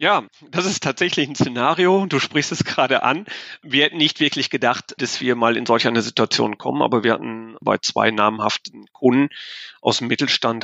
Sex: male